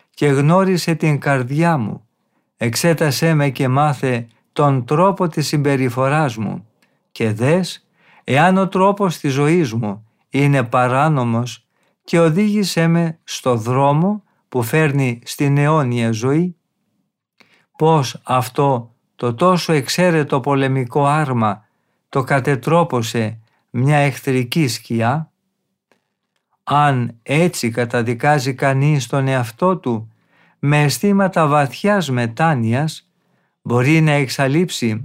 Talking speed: 105 wpm